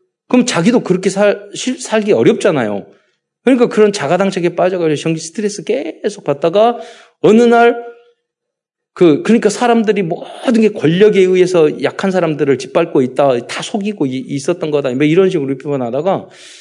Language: Korean